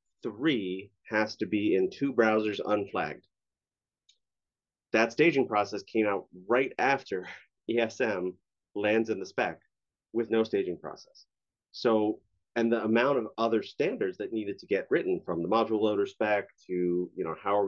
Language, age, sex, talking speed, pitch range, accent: English, 30-49, male, 155 wpm, 90-115 Hz, American